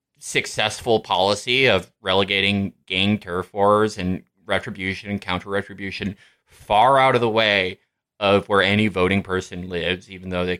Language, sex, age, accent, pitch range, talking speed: English, male, 20-39, American, 95-115 Hz, 140 wpm